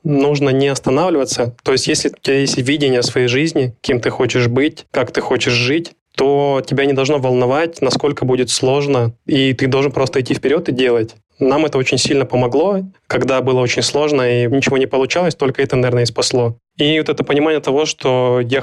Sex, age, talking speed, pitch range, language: male, 20-39, 195 wpm, 125-145 Hz, Russian